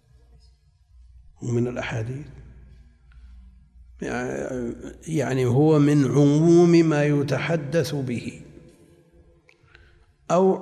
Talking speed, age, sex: 55 wpm, 60-79, male